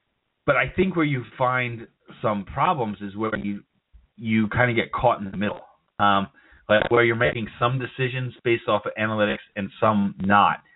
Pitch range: 105-130 Hz